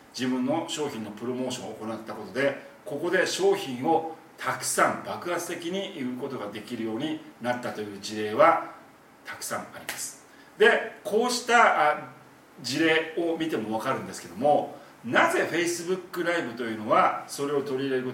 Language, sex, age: Japanese, male, 40-59